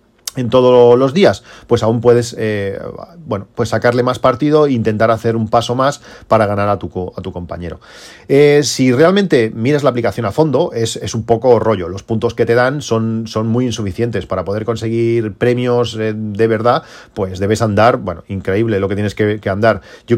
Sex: male